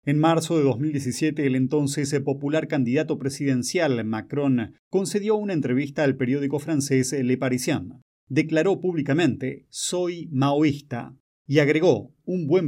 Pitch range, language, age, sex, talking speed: 130-155 Hz, Spanish, 30-49, male, 125 wpm